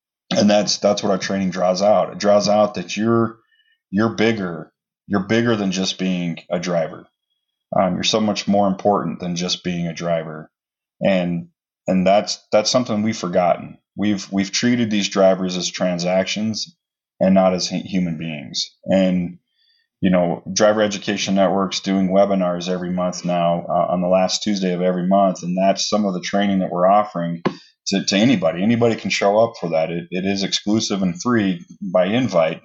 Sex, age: male, 30-49